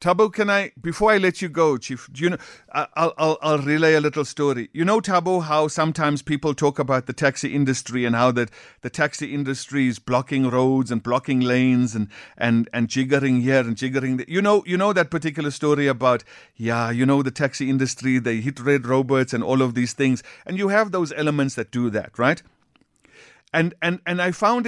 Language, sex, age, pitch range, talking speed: English, male, 50-69, 140-180 Hz, 210 wpm